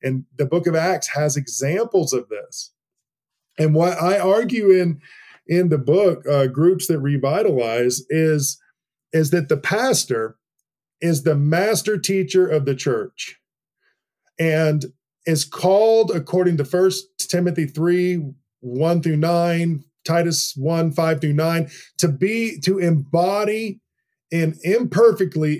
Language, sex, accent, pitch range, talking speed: English, male, American, 145-180 Hz, 125 wpm